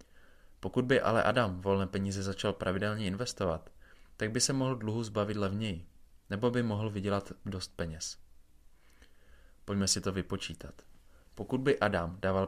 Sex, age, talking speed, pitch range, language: male, 20-39, 145 wpm, 90-105 Hz, Czech